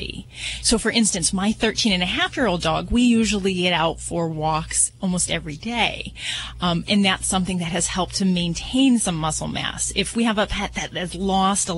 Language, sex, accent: English, female, American